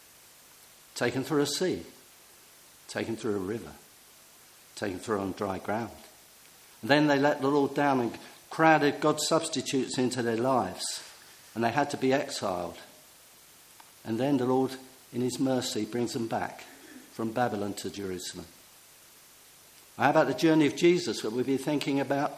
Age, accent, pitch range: 50-69, British, 115-150 Hz